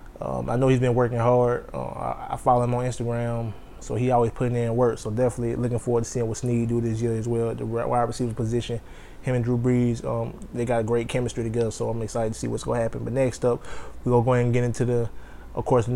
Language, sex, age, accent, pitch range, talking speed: English, male, 20-39, American, 110-125 Hz, 265 wpm